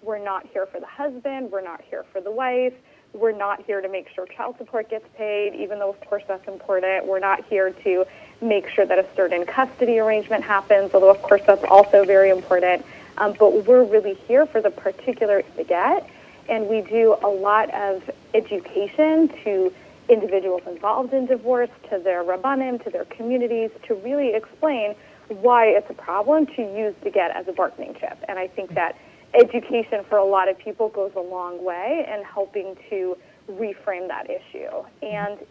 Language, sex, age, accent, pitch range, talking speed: English, female, 20-39, American, 195-245 Hz, 185 wpm